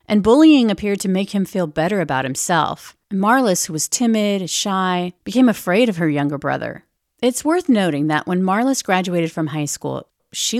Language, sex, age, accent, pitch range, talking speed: English, female, 40-59, American, 160-215 Hz, 180 wpm